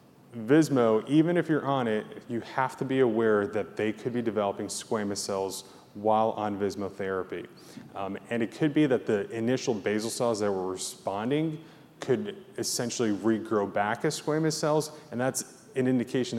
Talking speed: 170 wpm